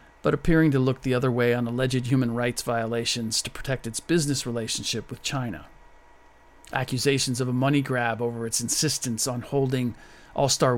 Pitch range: 120-140 Hz